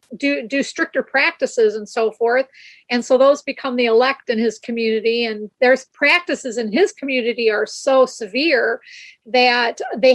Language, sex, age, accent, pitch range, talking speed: English, female, 40-59, American, 225-265 Hz, 160 wpm